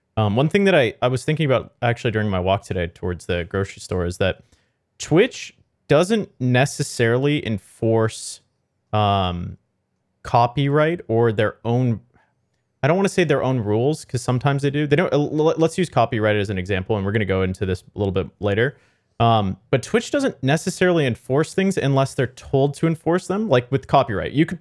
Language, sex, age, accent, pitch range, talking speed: English, male, 30-49, American, 105-140 Hz, 190 wpm